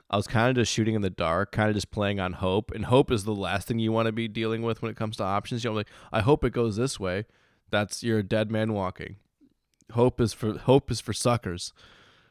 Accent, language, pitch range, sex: American, English, 100-115 Hz, male